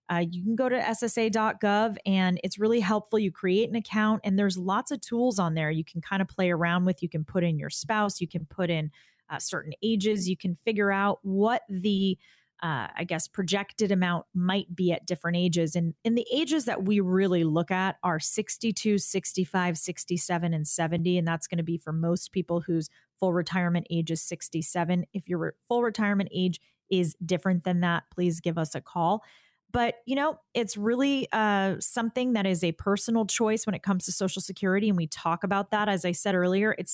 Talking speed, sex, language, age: 210 wpm, female, English, 30-49